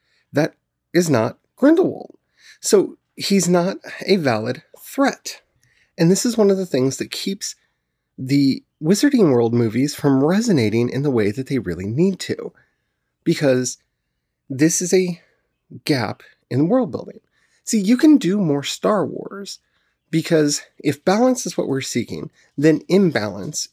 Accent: American